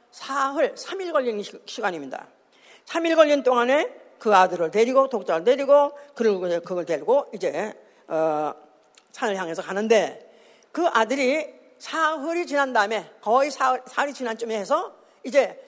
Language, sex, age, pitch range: Korean, female, 50-69, 230-300 Hz